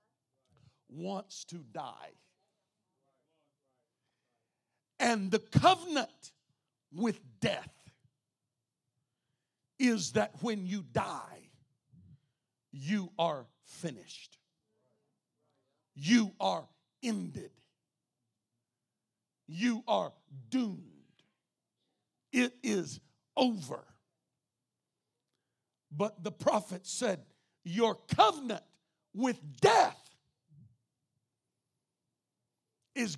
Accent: American